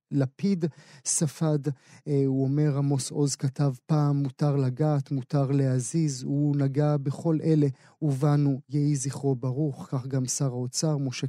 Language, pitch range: Hebrew, 140-155 Hz